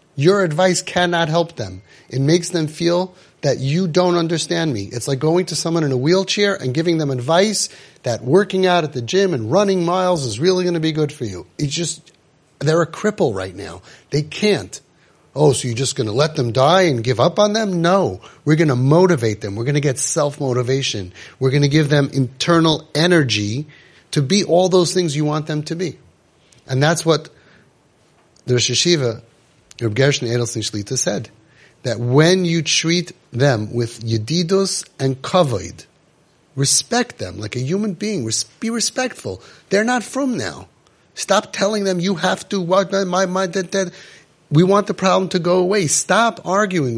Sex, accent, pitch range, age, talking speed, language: male, American, 125-180 Hz, 30-49, 180 wpm, English